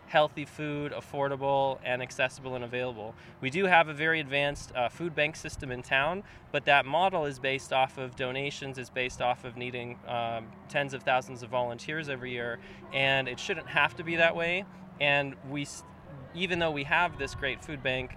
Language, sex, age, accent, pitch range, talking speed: English, male, 20-39, American, 125-145 Hz, 190 wpm